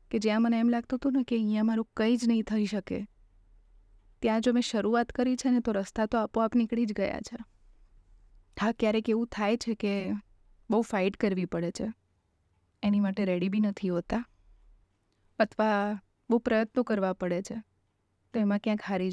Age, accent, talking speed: 20-39, native, 140 wpm